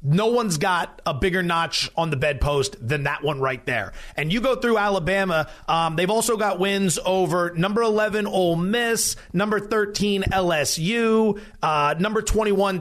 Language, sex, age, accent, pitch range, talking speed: English, male, 30-49, American, 170-230 Hz, 165 wpm